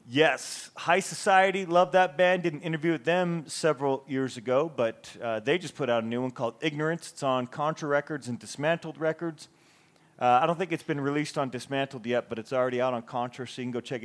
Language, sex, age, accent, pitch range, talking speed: English, male, 40-59, American, 130-170 Hz, 220 wpm